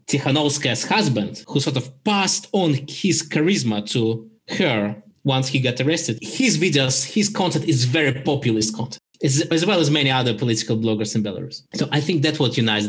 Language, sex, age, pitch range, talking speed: English, male, 20-39, 115-150 Hz, 175 wpm